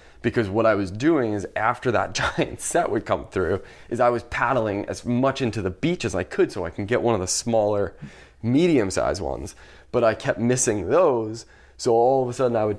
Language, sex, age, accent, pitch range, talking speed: English, male, 20-39, American, 95-120 Hz, 220 wpm